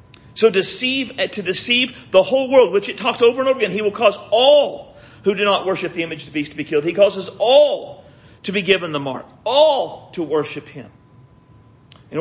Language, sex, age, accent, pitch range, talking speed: English, male, 50-69, American, 130-170 Hz, 205 wpm